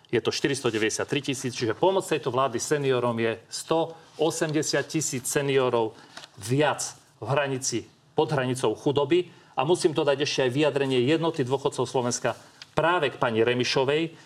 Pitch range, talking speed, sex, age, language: 125-155 Hz, 140 wpm, male, 40-59, Slovak